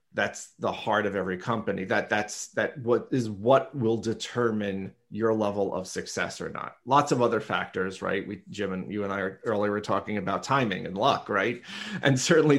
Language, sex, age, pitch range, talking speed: English, male, 30-49, 105-130 Hz, 195 wpm